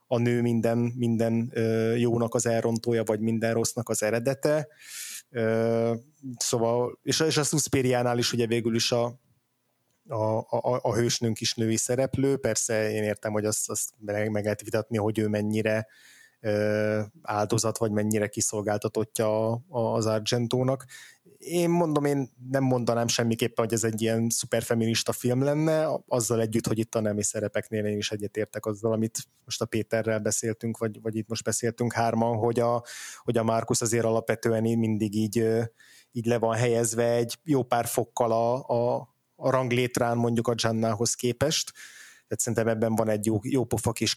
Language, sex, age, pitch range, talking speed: Hungarian, male, 20-39, 110-120 Hz, 150 wpm